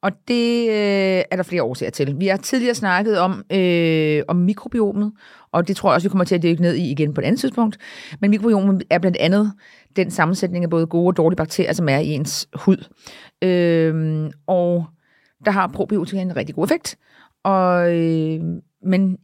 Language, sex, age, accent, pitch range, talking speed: Danish, female, 30-49, native, 160-195 Hz, 185 wpm